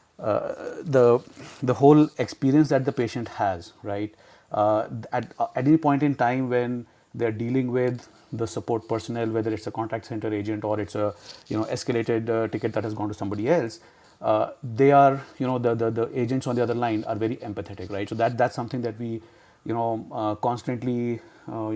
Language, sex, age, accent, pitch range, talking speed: English, male, 30-49, Indian, 110-125 Hz, 200 wpm